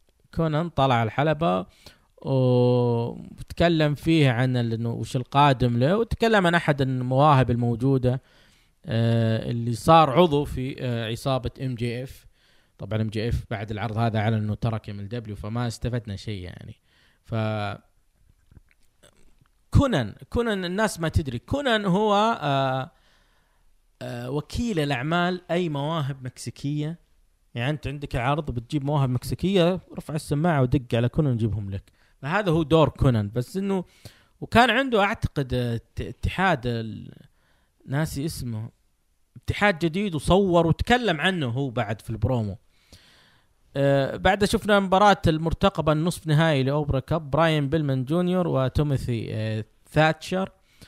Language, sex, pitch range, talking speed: Arabic, male, 115-155 Hz, 120 wpm